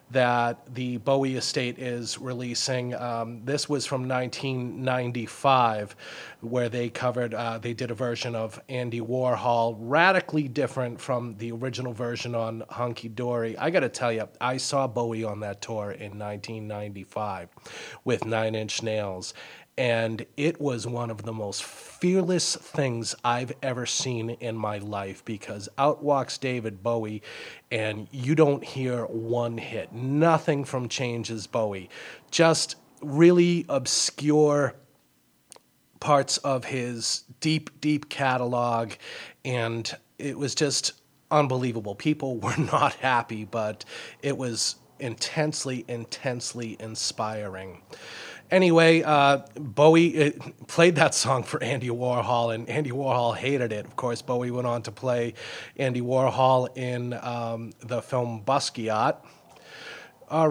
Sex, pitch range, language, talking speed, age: male, 115-140 Hz, English, 130 wpm, 30-49